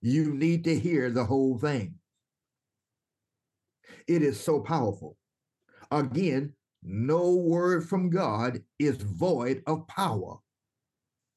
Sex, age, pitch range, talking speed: male, 60-79, 125-170 Hz, 105 wpm